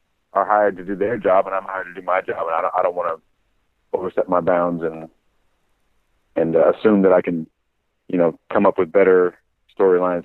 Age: 40-59